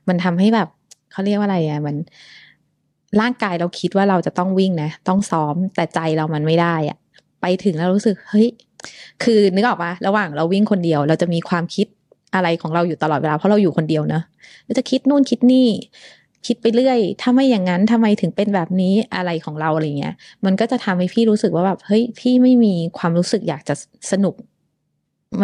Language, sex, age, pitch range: Thai, female, 20-39, 165-210 Hz